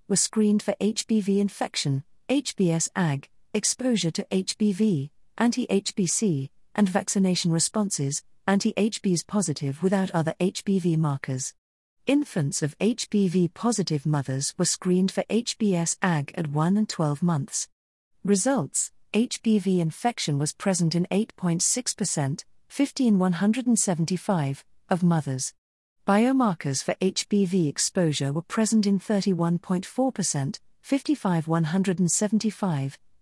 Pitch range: 165-215 Hz